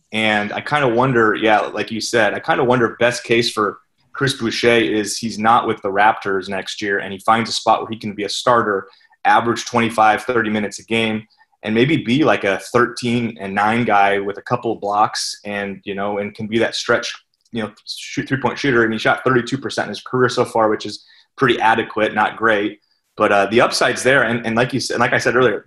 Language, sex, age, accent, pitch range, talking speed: English, male, 30-49, American, 105-125 Hz, 235 wpm